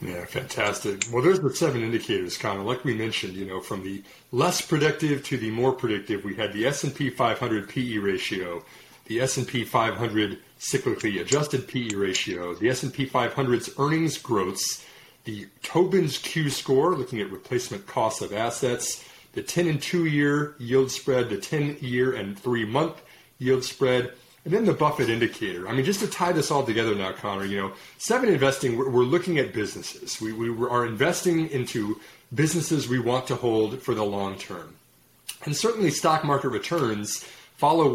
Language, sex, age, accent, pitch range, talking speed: English, male, 30-49, American, 110-150 Hz, 170 wpm